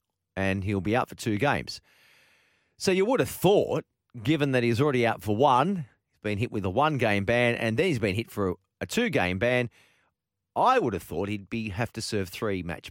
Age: 40-59